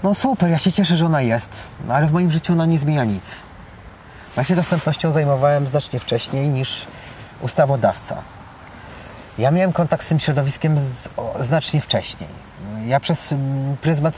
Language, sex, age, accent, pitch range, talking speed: Polish, male, 30-49, native, 115-160 Hz, 150 wpm